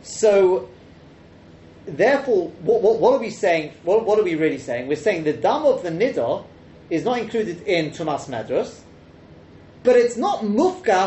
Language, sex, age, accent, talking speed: English, male, 30-49, British, 170 wpm